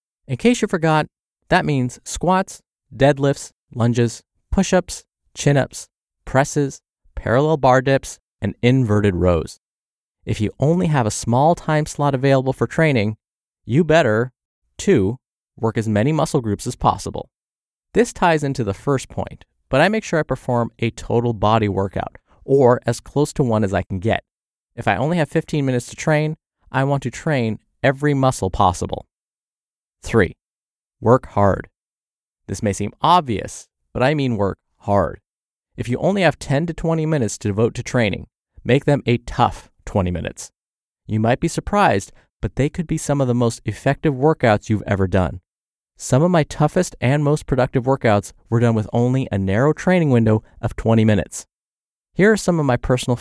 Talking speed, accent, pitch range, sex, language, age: 170 wpm, American, 105-150 Hz, male, English, 20-39